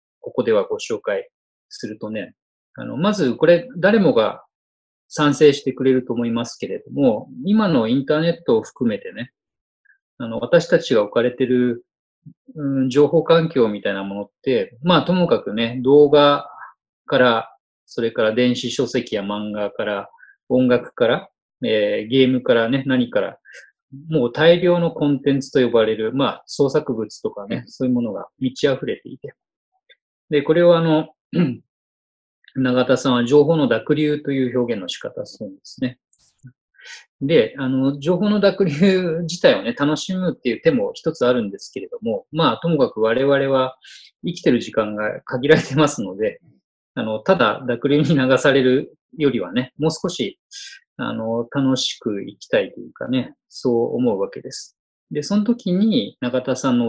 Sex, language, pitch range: male, Japanese, 125-185 Hz